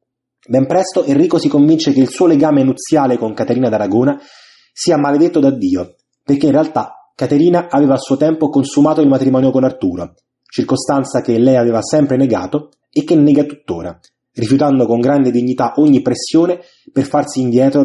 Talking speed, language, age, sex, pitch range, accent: 165 wpm, Italian, 20-39, male, 125-155 Hz, native